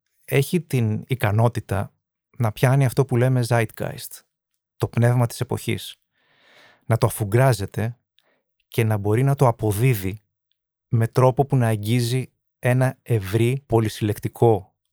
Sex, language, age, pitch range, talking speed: male, Greek, 30-49, 110-130 Hz, 120 wpm